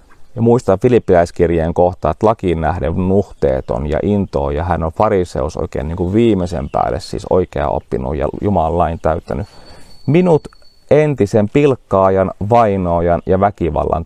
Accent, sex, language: native, male, Finnish